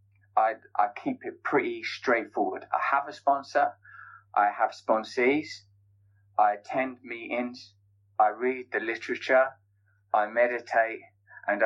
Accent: British